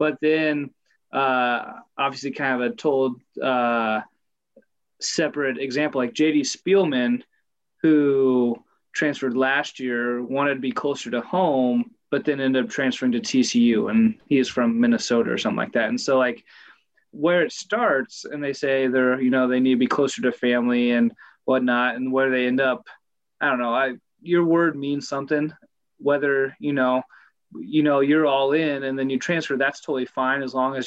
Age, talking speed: 20-39, 180 wpm